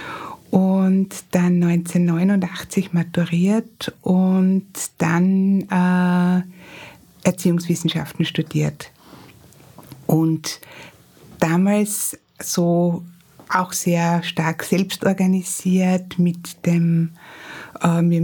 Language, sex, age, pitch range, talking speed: German, female, 60-79, 170-195 Hz, 60 wpm